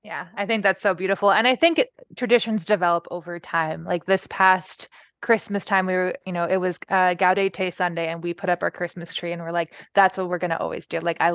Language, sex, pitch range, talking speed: English, female, 175-195 Hz, 245 wpm